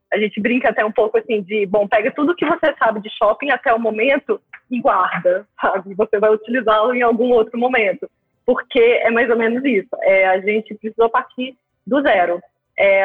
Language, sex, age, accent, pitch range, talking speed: Portuguese, female, 20-39, Brazilian, 205-260 Hz, 200 wpm